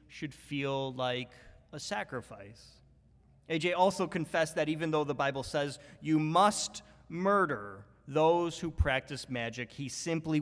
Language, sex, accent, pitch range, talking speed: English, male, American, 130-175 Hz, 130 wpm